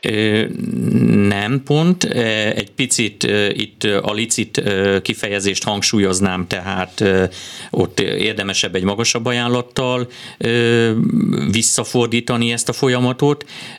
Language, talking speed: Hungarian, 85 wpm